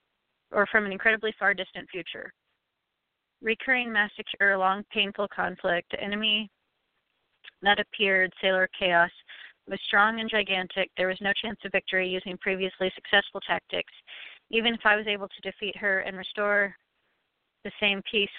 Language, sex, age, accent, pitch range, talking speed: English, female, 30-49, American, 185-210 Hz, 145 wpm